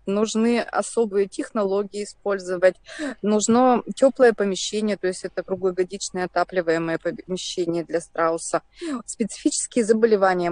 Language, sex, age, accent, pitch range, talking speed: Russian, female, 20-39, native, 180-230 Hz, 95 wpm